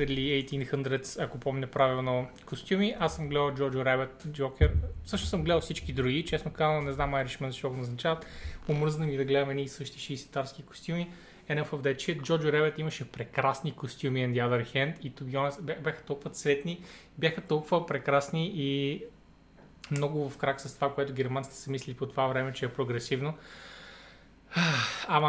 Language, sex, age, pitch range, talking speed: Bulgarian, male, 20-39, 135-160 Hz, 160 wpm